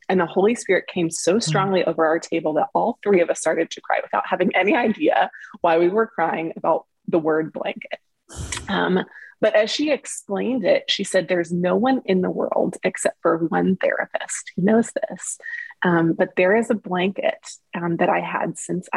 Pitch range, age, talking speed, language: 170-215 Hz, 20-39, 195 wpm, English